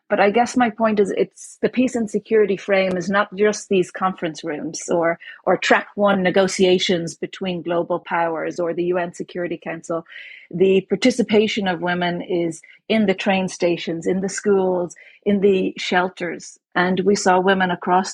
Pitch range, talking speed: 170-205 Hz, 170 wpm